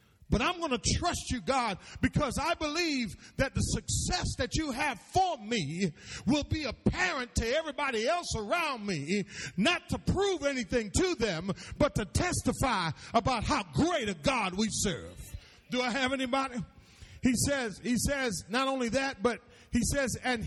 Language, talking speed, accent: English, 165 wpm, American